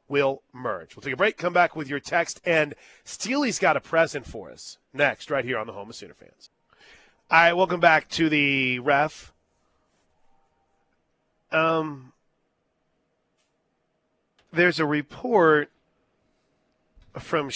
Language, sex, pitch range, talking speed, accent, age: English, male, 135-180 Hz, 130 wpm, American, 40-59